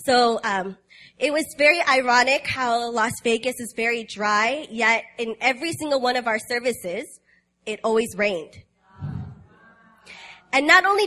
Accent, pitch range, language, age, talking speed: American, 215-275 Hz, English, 20-39, 140 wpm